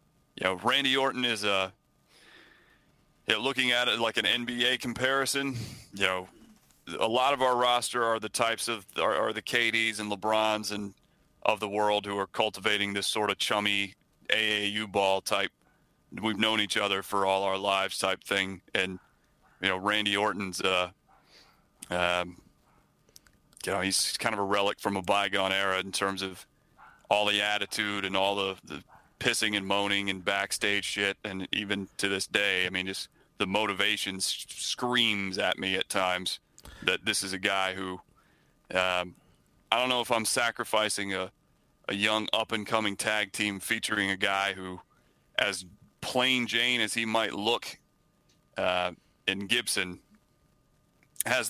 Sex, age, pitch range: male, 30-49, 95-110 Hz